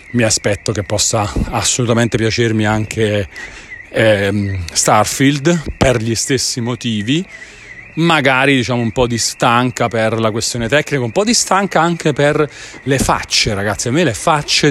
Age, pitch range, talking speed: 30-49, 115-145 Hz, 145 wpm